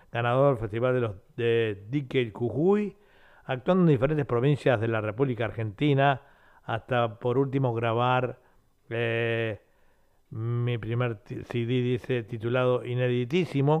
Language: Spanish